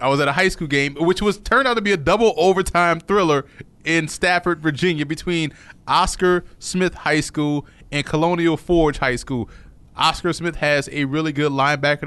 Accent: American